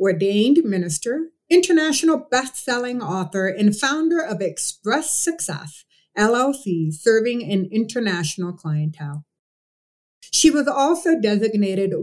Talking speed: 95 wpm